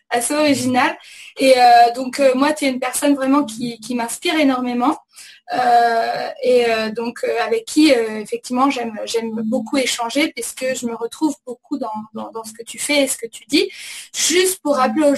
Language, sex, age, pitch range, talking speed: French, female, 20-39, 235-290 Hz, 200 wpm